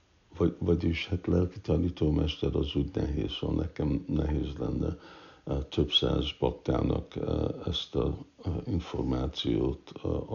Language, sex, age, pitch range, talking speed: Hungarian, male, 60-79, 75-85 Hz, 130 wpm